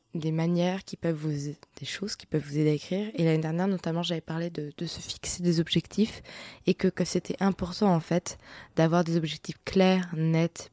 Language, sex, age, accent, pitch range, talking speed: French, female, 20-39, French, 155-185 Hz, 205 wpm